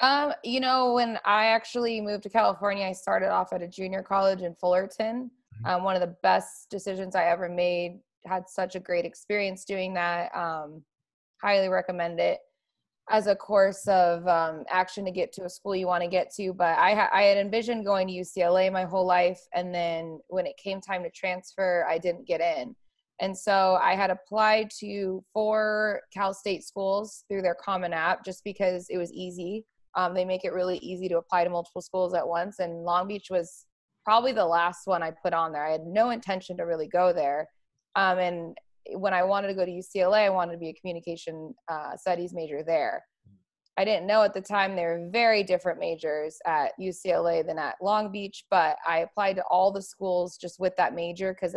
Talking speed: 205 wpm